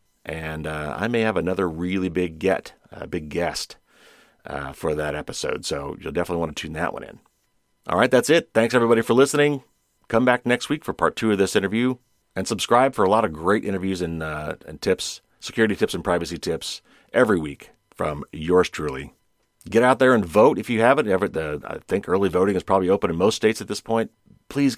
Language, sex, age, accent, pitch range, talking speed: English, male, 40-59, American, 80-105 Hz, 220 wpm